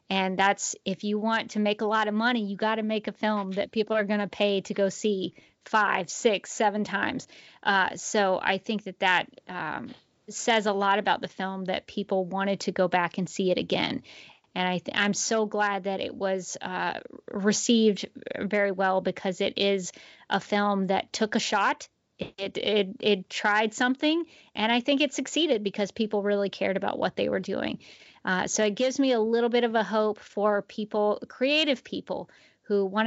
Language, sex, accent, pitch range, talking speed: English, female, American, 195-225 Hz, 200 wpm